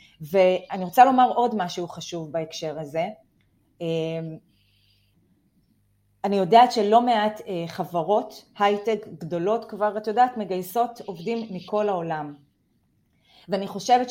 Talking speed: 100 wpm